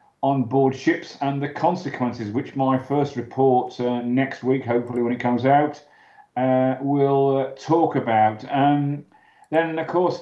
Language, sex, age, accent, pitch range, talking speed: English, male, 40-59, British, 110-135 Hz, 160 wpm